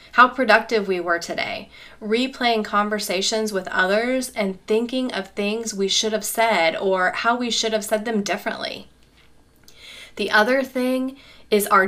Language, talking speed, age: English, 150 wpm, 30-49